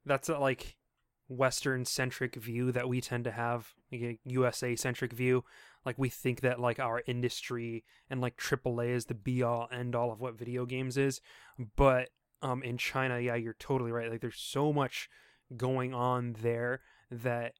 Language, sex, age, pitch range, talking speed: English, male, 20-39, 120-135 Hz, 175 wpm